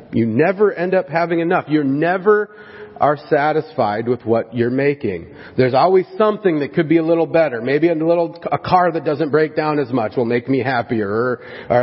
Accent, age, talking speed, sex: American, 40-59, 200 wpm, male